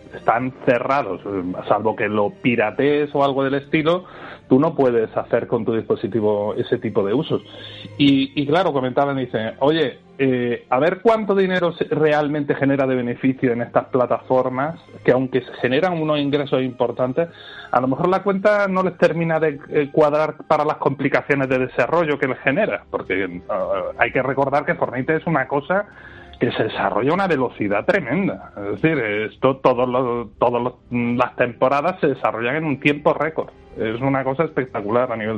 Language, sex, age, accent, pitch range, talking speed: Spanish, male, 30-49, Spanish, 120-155 Hz, 170 wpm